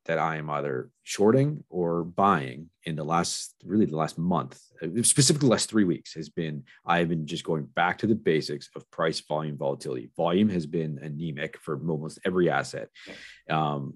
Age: 30-49